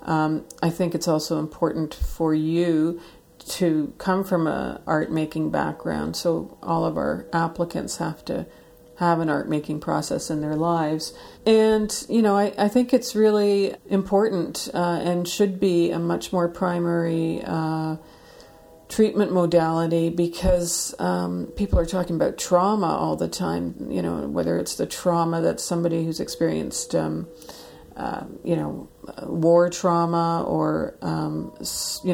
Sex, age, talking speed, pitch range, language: female, 50-69, 145 wpm, 160-180 Hz, English